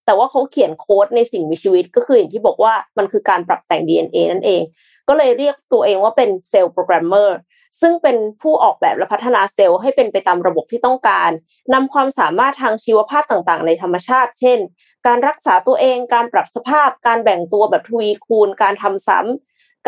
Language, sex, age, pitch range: Thai, female, 20-39, 200-280 Hz